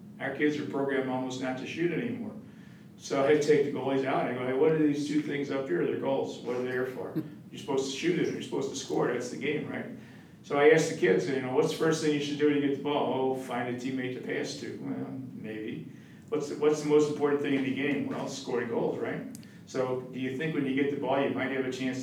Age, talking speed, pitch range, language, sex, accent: 50-69, 285 wpm, 125-145 Hz, English, male, American